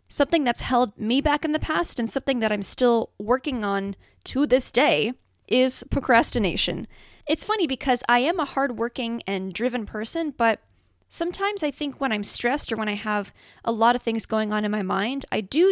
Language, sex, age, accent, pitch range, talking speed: English, female, 10-29, American, 205-265 Hz, 200 wpm